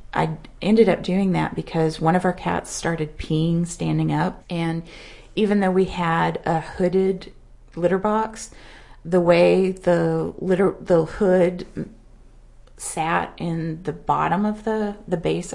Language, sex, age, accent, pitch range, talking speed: English, female, 30-49, American, 155-185 Hz, 145 wpm